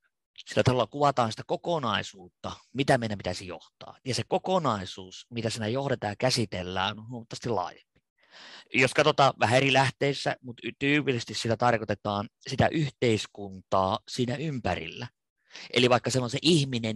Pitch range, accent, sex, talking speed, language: 110-145 Hz, native, male, 140 wpm, Finnish